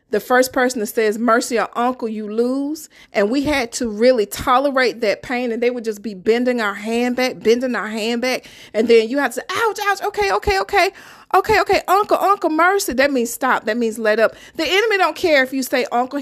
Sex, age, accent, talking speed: female, 40-59, American, 230 wpm